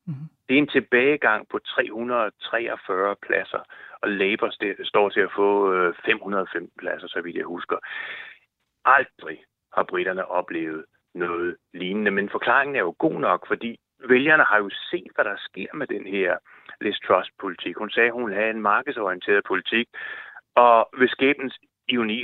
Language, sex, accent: Danish, male, native